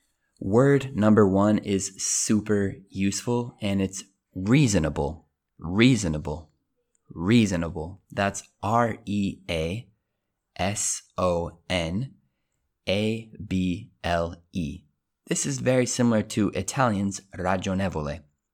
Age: 20-39